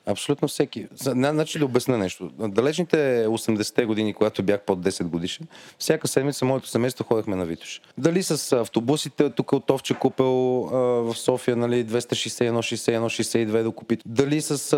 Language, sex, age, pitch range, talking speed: Bulgarian, male, 30-49, 105-130 Hz, 160 wpm